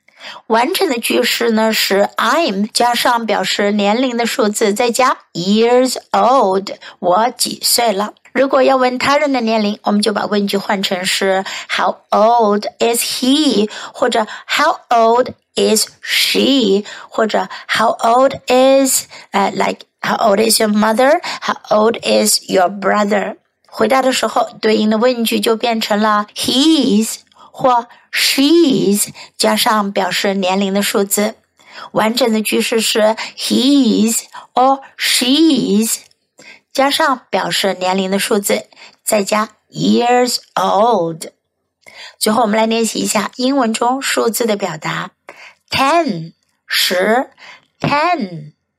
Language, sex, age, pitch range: Chinese, female, 60-79, 205-255 Hz